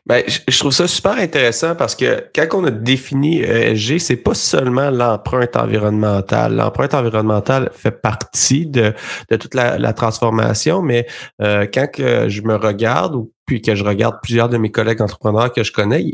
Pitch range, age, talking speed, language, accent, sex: 105-120 Hz, 30-49, 180 wpm, French, Canadian, male